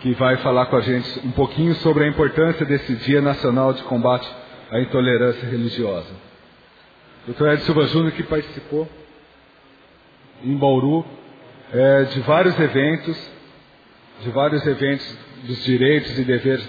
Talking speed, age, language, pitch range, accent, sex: 135 wpm, 40-59, English, 125-160 Hz, Brazilian, male